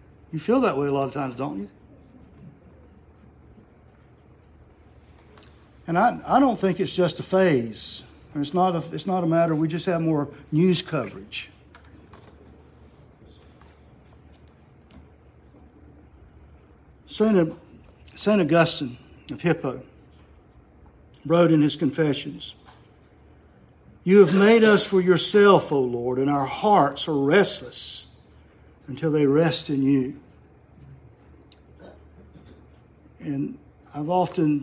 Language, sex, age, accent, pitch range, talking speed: English, male, 60-79, American, 120-165 Hz, 115 wpm